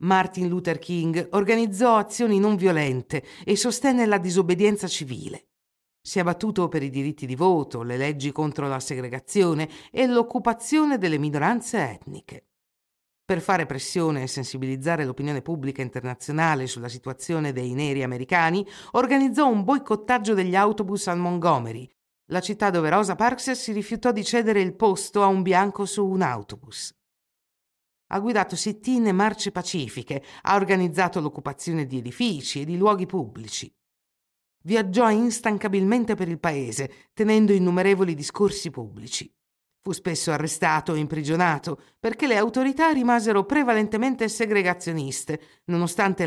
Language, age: Italian, 50-69